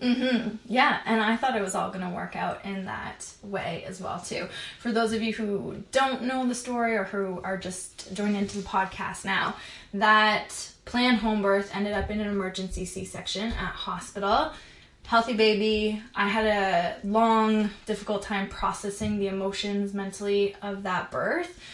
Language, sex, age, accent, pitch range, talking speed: English, female, 20-39, American, 195-225 Hz, 175 wpm